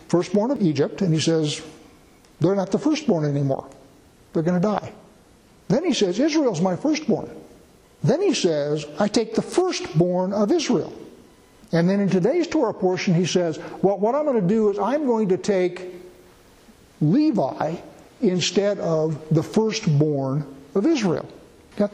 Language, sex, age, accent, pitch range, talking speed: English, male, 60-79, American, 165-215 Hz, 155 wpm